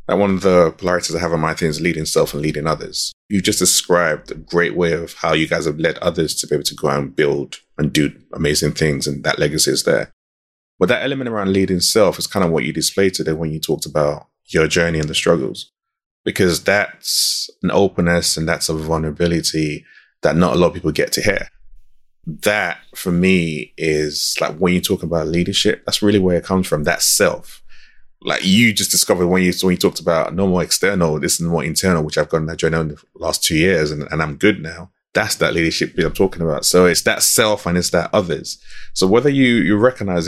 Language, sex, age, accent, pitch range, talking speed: English, male, 20-39, British, 80-95 Hz, 230 wpm